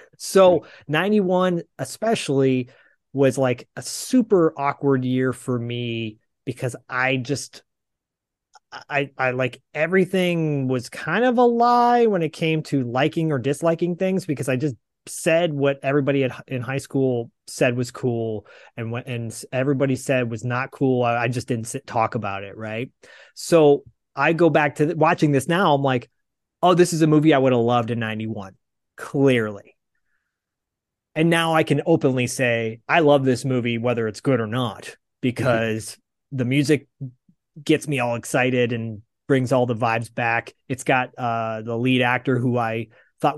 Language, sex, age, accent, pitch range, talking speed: English, male, 30-49, American, 120-150 Hz, 160 wpm